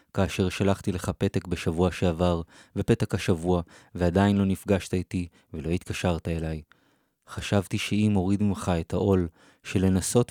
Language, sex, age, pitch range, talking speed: Hebrew, male, 20-39, 90-105 Hz, 135 wpm